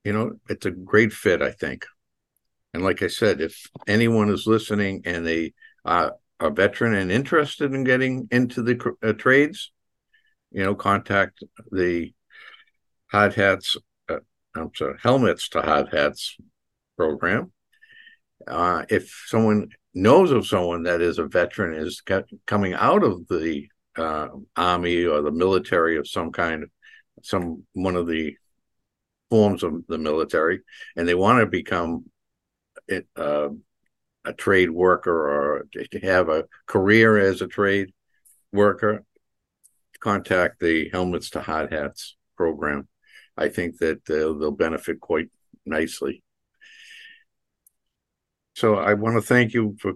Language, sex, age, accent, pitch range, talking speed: English, male, 60-79, American, 85-115 Hz, 135 wpm